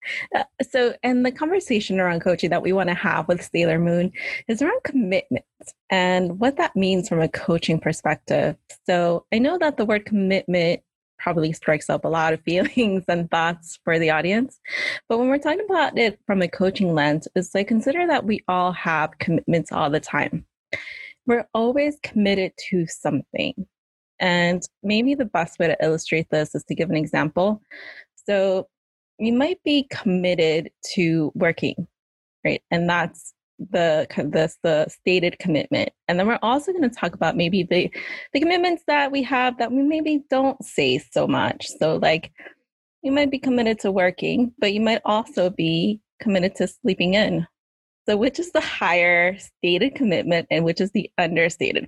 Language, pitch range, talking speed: English, 175-255 Hz, 170 wpm